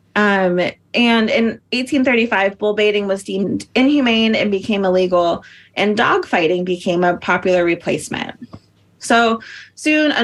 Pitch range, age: 185-230 Hz, 30-49